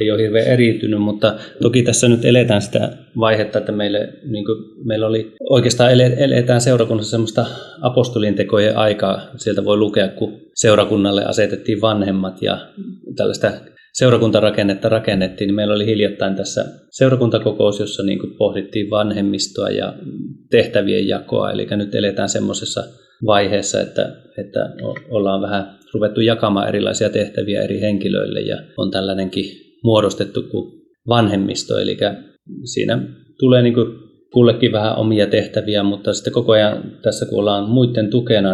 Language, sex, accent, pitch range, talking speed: Finnish, male, native, 100-115 Hz, 130 wpm